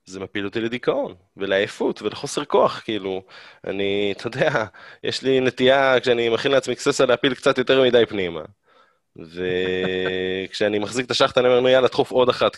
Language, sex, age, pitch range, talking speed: Hebrew, male, 20-39, 100-125 Hz, 155 wpm